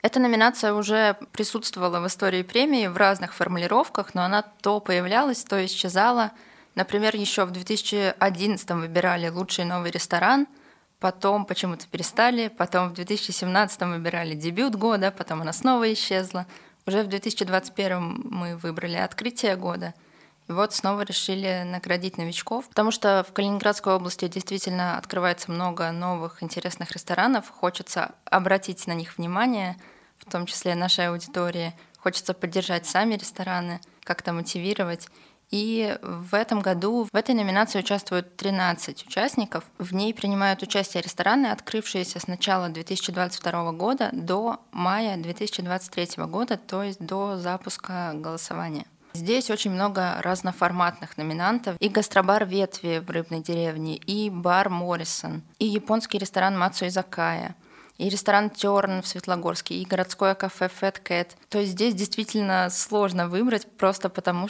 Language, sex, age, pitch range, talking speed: Russian, female, 20-39, 180-210 Hz, 130 wpm